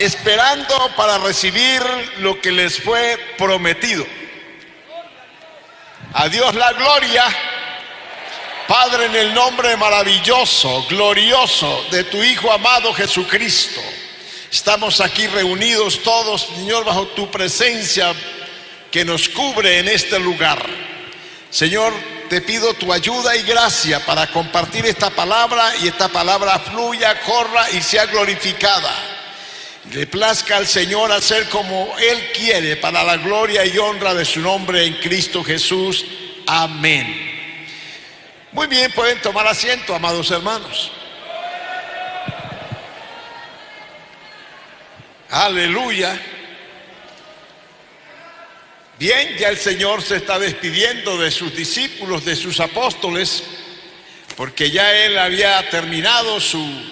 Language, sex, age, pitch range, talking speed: Spanish, male, 60-79, 180-230 Hz, 110 wpm